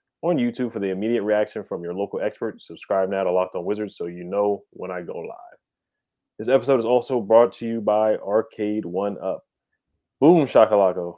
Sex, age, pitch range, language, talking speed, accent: male, 20-39, 100-115 Hz, English, 195 wpm, American